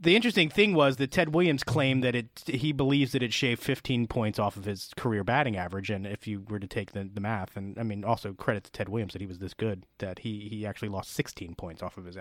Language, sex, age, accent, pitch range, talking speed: English, male, 30-49, American, 105-135 Hz, 270 wpm